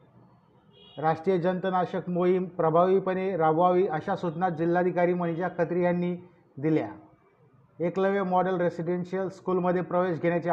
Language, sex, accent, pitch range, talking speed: Marathi, male, native, 170-180 Hz, 105 wpm